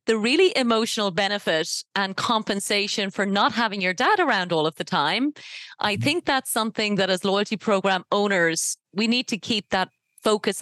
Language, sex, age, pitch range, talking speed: English, female, 30-49, 190-255 Hz, 175 wpm